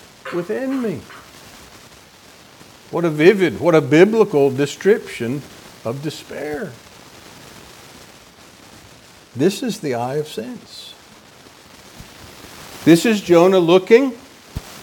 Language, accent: English, American